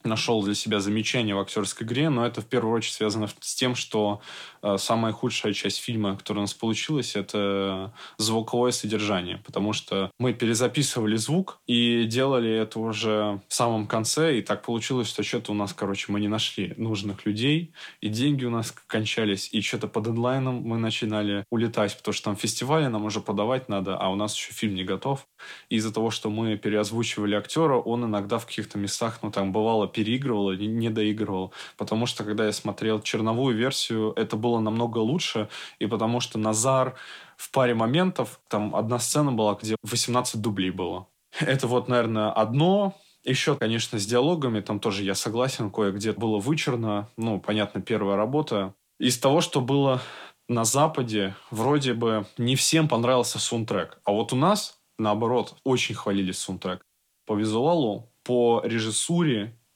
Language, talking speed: Russian, 170 wpm